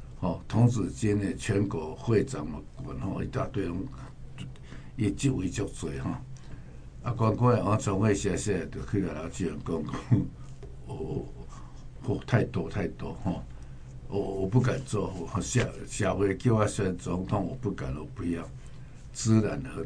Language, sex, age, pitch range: Chinese, male, 60-79, 95-130 Hz